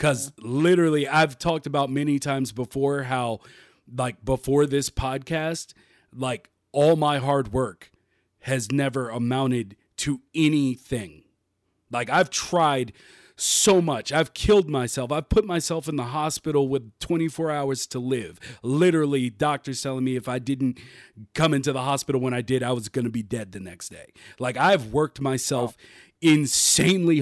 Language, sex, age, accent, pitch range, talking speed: English, male, 40-59, American, 125-160 Hz, 155 wpm